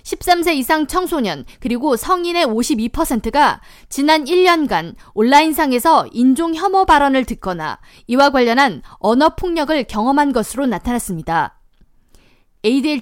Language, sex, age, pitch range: Korean, female, 20-39, 235-325 Hz